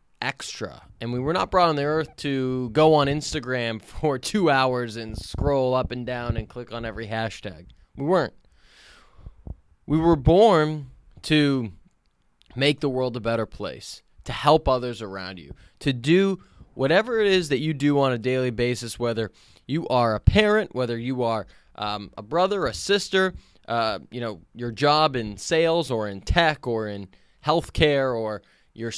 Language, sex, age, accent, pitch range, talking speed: English, male, 20-39, American, 115-165 Hz, 170 wpm